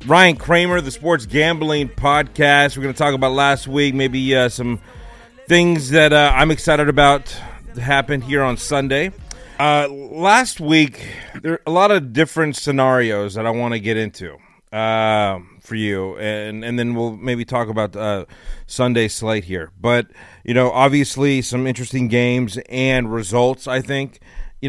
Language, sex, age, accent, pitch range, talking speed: English, male, 30-49, American, 115-145 Hz, 165 wpm